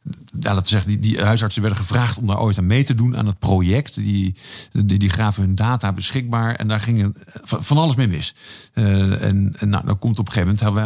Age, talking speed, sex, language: 50-69, 245 wpm, male, Dutch